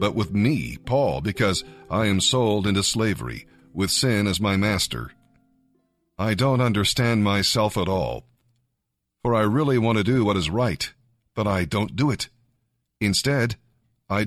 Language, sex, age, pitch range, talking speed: English, male, 50-69, 100-120 Hz, 155 wpm